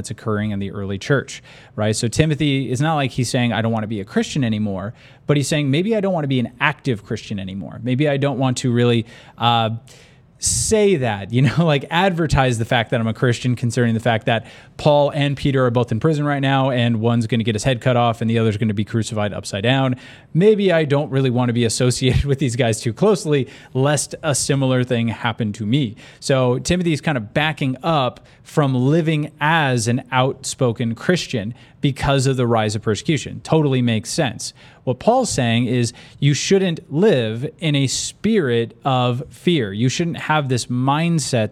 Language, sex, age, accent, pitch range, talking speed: English, male, 30-49, American, 115-145 Hz, 205 wpm